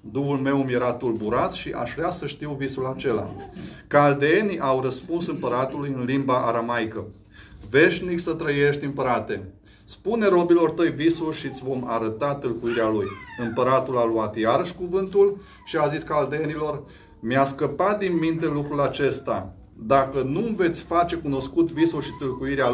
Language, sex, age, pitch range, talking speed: Romanian, male, 30-49, 120-155 Hz, 150 wpm